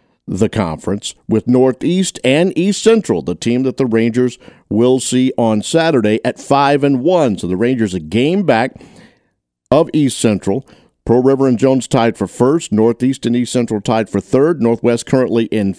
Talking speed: 175 wpm